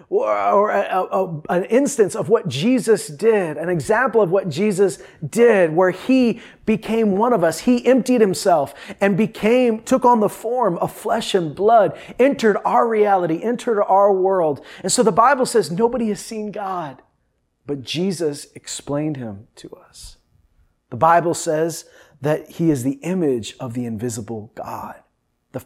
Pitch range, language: 155-205 Hz, English